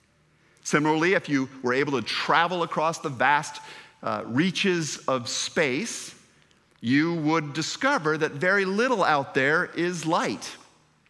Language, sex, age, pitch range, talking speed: English, male, 50-69, 120-165 Hz, 130 wpm